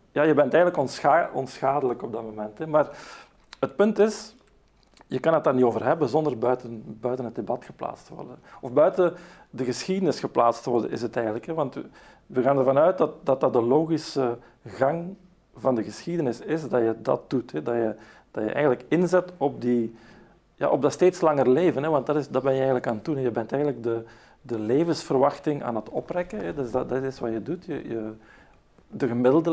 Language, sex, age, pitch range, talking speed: Dutch, male, 50-69, 115-155 Hz, 195 wpm